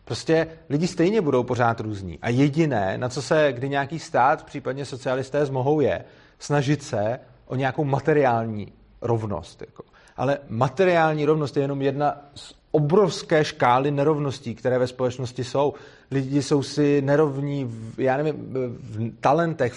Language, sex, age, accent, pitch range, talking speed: Czech, male, 30-49, native, 135-170 Hz, 145 wpm